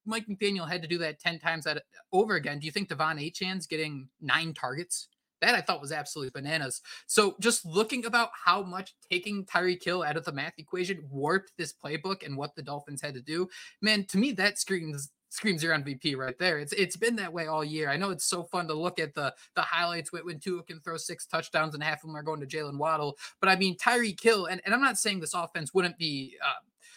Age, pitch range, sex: 20-39, 155-195 Hz, male